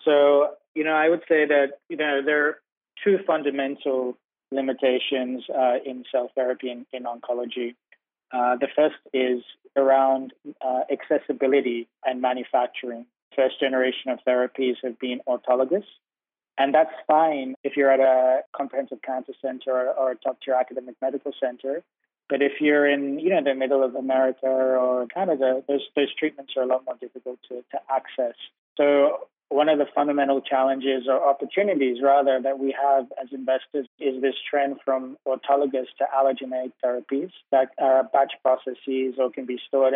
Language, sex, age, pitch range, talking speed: English, male, 30-49, 130-145 Hz, 160 wpm